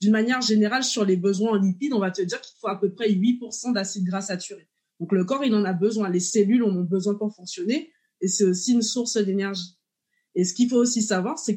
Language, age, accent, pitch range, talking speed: French, 20-39, French, 195-240 Hz, 245 wpm